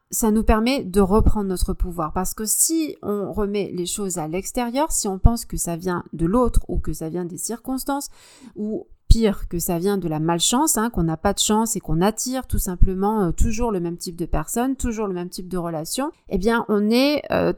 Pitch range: 175-235 Hz